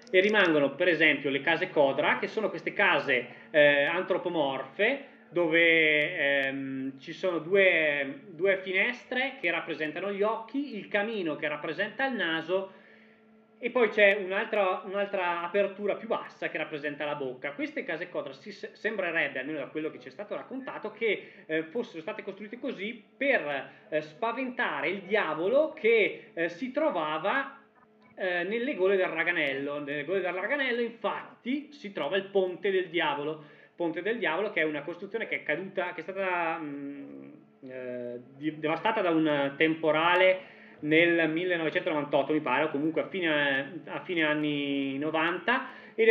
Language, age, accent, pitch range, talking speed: Italian, 20-39, native, 150-205 Hz, 150 wpm